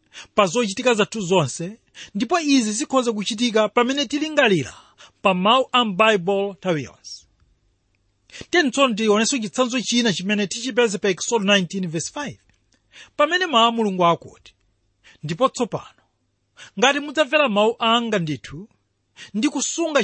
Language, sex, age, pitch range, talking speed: English, male, 40-59, 165-255 Hz, 125 wpm